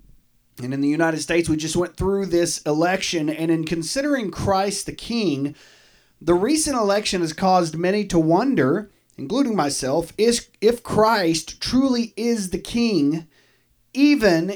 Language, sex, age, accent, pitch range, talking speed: English, male, 30-49, American, 145-190 Hz, 150 wpm